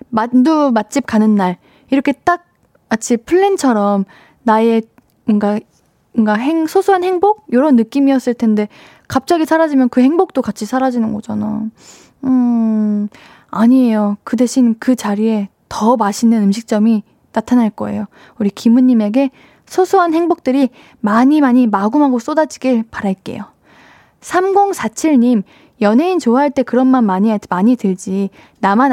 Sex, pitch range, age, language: female, 215-260 Hz, 10-29, Korean